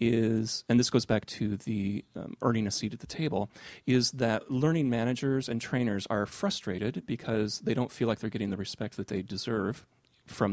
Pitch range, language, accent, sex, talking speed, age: 105-120 Hz, English, American, male, 200 wpm, 30-49